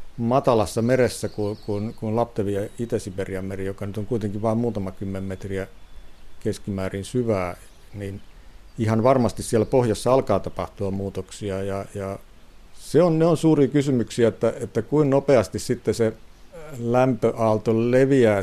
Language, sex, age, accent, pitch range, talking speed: Finnish, male, 50-69, native, 100-115 Hz, 140 wpm